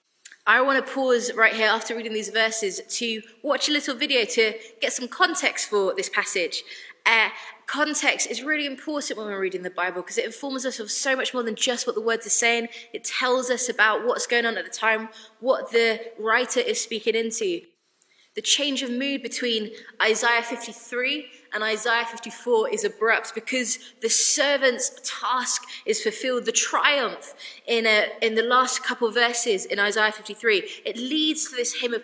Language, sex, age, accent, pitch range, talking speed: English, female, 20-39, British, 225-285 Hz, 190 wpm